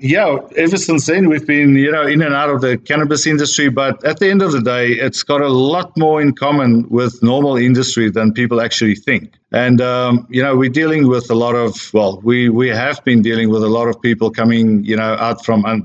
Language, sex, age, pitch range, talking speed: English, male, 50-69, 115-140 Hz, 240 wpm